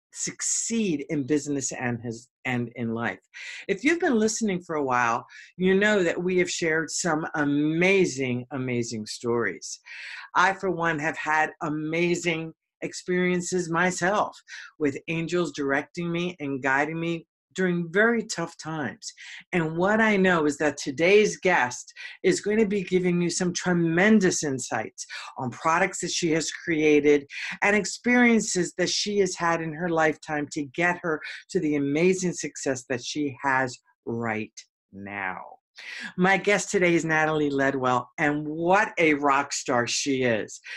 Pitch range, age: 145-190 Hz, 50-69